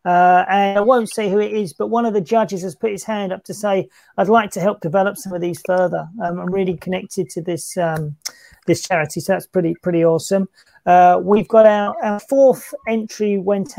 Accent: British